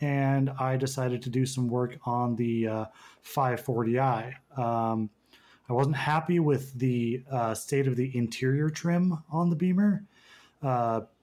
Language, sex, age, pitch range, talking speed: English, male, 30-49, 115-140 Hz, 145 wpm